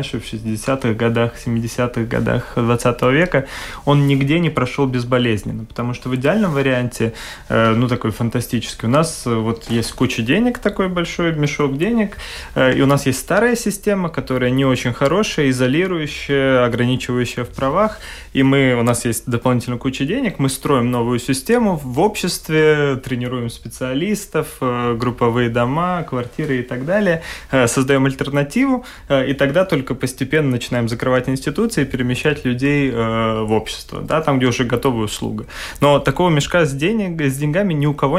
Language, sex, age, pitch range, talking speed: Russian, male, 20-39, 120-150 Hz, 150 wpm